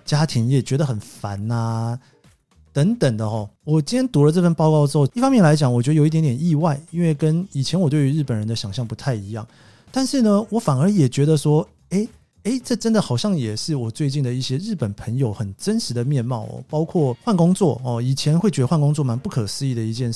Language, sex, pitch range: Chinese, male, 120-165 Hz